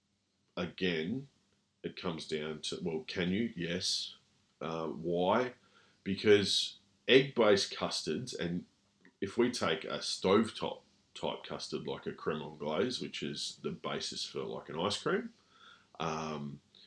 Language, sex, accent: English, male, Australian